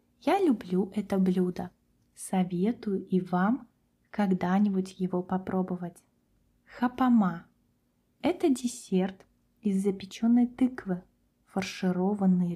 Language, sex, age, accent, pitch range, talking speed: Russian, female, 20-39, native, 185-220 Hz, 80 wpm